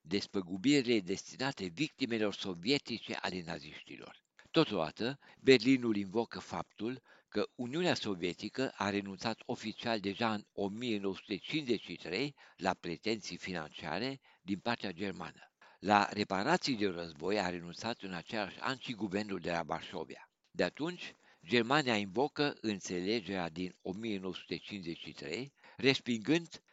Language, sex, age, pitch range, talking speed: Romanian, male, 60-79, 95-125 Hz, 105 wpm